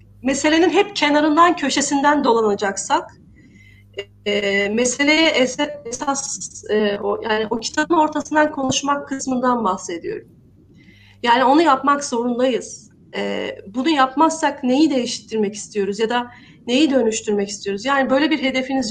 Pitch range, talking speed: 210-295 Hz, 115 wpm